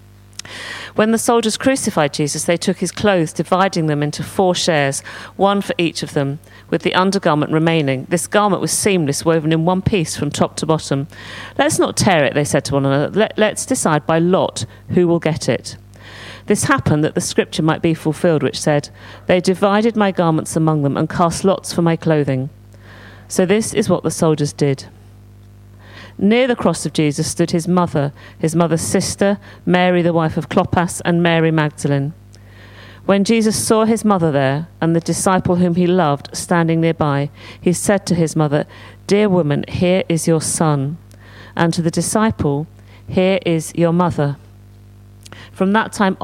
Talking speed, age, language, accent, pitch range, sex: 175 wpm, 40-59, English, British, 135-180 Hz, female